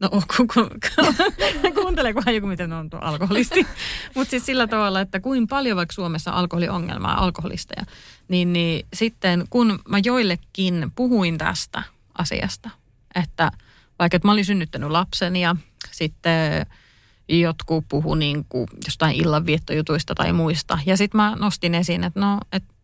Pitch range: 160-200 Hz